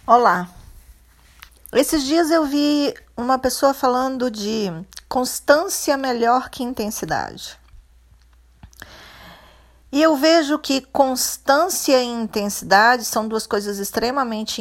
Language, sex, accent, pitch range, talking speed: Portuguese, female, Brazilian, 205-275 Hz, 100 wpm